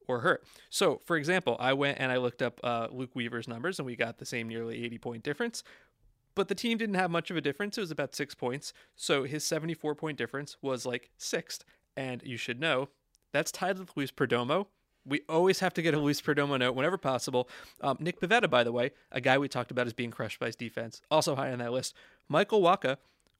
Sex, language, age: male, English, 30-49